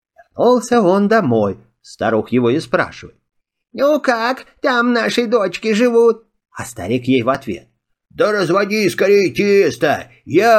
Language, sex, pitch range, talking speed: Russian, male, 140-235 Hz, 130 wpm